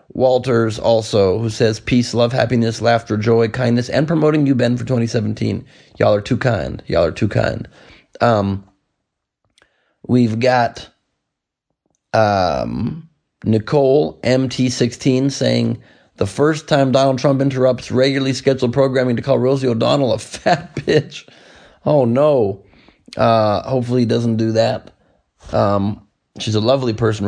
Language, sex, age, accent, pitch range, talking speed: English, male, 30-49, American, 110-130 Hz, 130 wpm